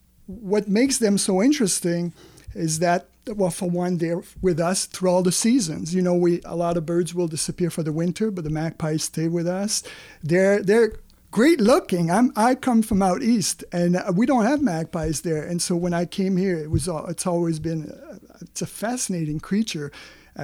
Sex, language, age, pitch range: male, English, 50-69, 175-210 Hz